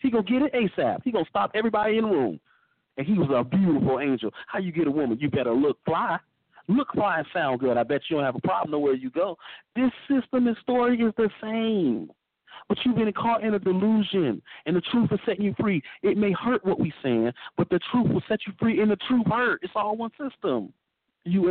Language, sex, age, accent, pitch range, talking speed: English, male, 40-59, American, 150-220 Hz, 245 wpm